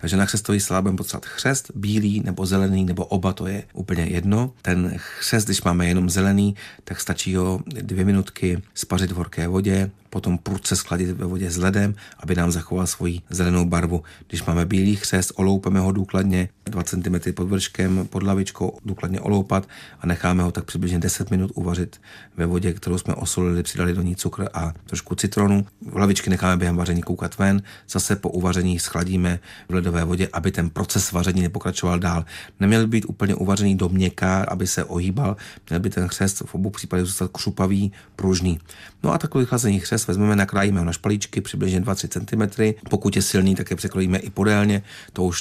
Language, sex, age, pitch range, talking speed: Czech, male, 40-59, 90-100 Hz, 180 wpm